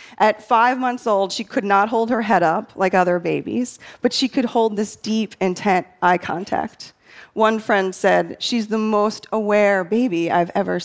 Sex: female